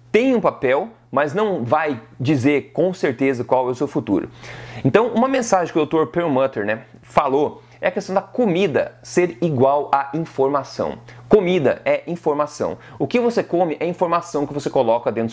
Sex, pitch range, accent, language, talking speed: male, 135-200 Hz, Brazilian, Portuguese, 175 wpm